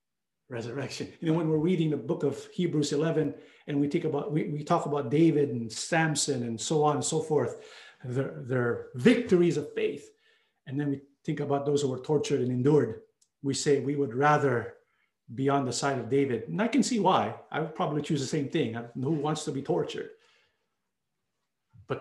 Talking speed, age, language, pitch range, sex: 190 wpm, 50-69, English, 140-205 Hz, male